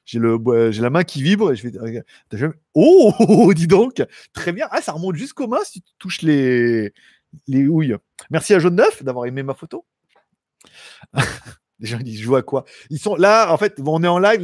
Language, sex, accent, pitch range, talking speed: French, male, French, 140-210 Hz, 215 wpm